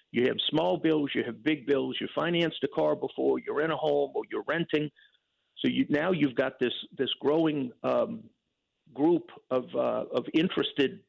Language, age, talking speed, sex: English, 50-69, 185 wpm, male